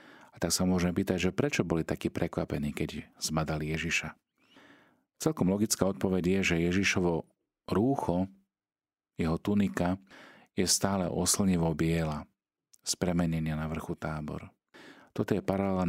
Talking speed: 130 wpm